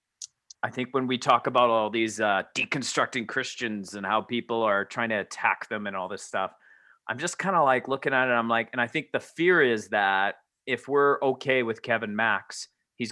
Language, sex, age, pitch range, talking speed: English, male, 30-49, 115-145 Hz, 220 wpm